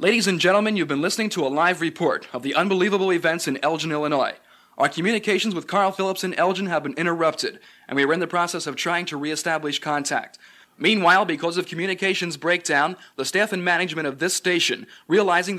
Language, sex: English, male